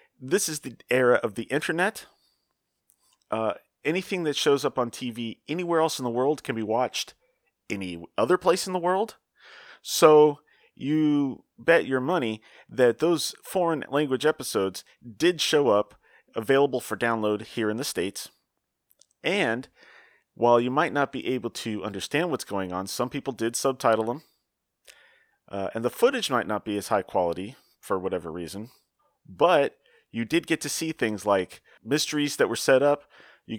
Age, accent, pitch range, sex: 30-49, American, 110-155 Hz, male